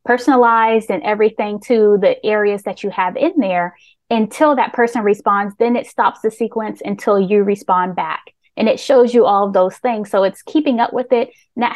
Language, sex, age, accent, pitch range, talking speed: English, female, 20-39, American, 195-240 Hz, 200 wpm